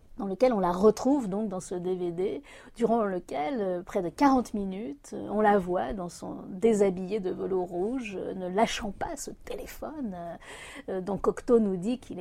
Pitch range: 200-280 Hz